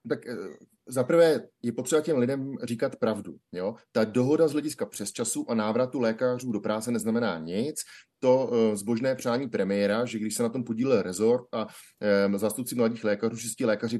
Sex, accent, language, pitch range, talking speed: male, native, Czech, 110-125 Hz, 170 wpm